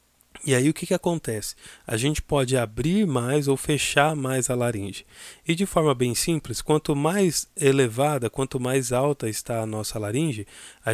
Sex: male